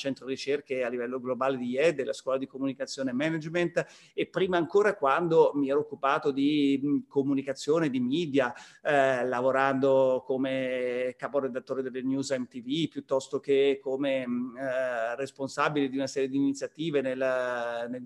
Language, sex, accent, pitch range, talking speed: Italian, male, native, 135-170 Hz, 145 wpm